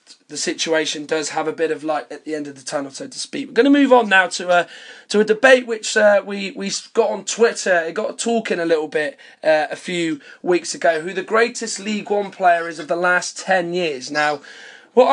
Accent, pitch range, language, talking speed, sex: British, 165-215 Hz, English, 240 wpm, male